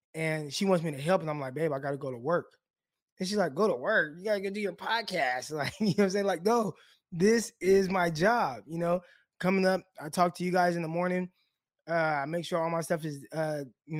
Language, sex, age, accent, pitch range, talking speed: English, male, 20-39, American, 160-190 Hz, 270 wpm